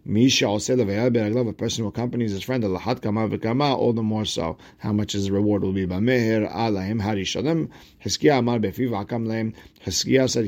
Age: 50-69